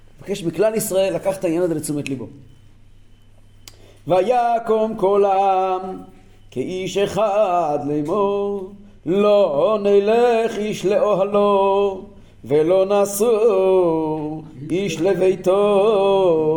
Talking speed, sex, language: 80 wpm, male, Hebrew